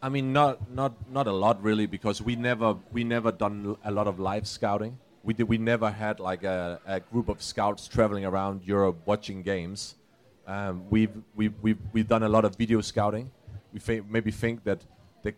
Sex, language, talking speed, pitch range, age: male, English, 205 wpm, 100-115 Hz, 30-49